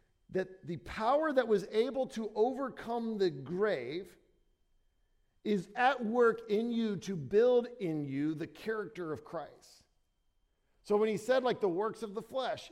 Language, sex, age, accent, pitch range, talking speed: English, male, 50-69, American, 190-250 Hz, 155 wpm